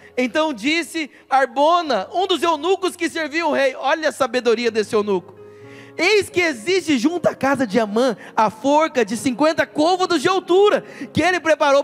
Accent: Brazilian